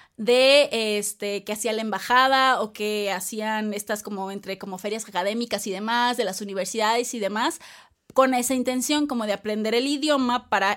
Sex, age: female, 20-39